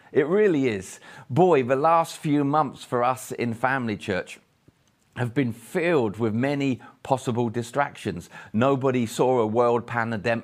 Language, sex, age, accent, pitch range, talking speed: English, male, 40-59, British, 115-145 Hz, 145 wpm